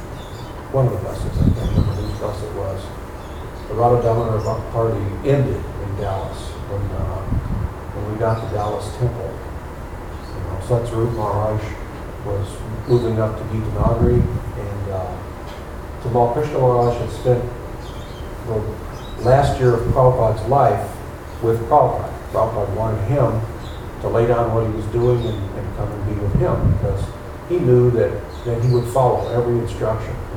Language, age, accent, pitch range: English, 40-59, American, 100-120 Hz